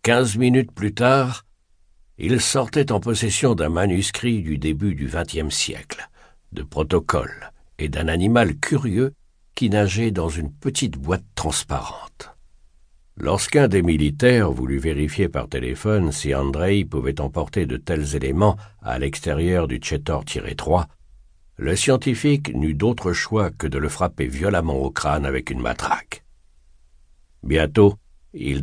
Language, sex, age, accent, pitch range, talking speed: French, male, 60-79, French, 70-105 Hz, 135 wpm